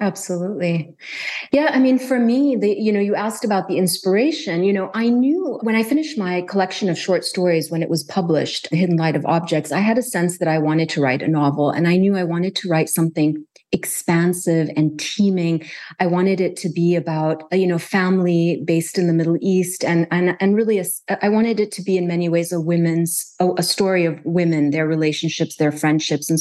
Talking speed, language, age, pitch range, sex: 215 wpm, English, 30-49, 160-195 Hz, female